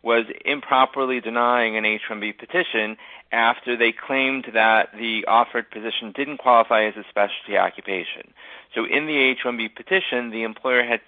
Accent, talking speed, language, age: American, 145 wpm, English, 40-59